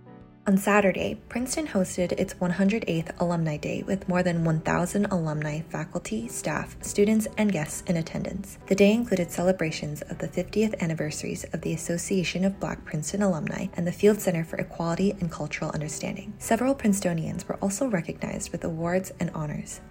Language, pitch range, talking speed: English, 170-195 Hz, 160 wpm